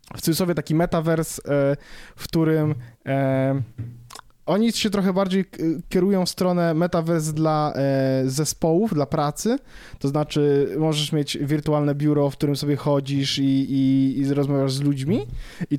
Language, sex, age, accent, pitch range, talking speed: Polish, male, 20-39, native, 140-175 Hz, 135 wpm